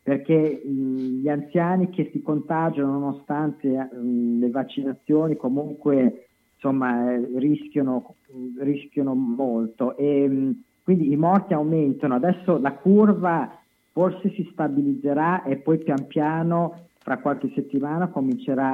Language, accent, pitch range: Italian, native, 125-150 Hz